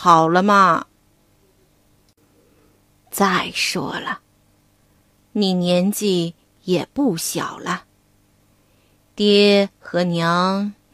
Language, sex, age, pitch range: Chinese, female, 30-49, 175-275 Hz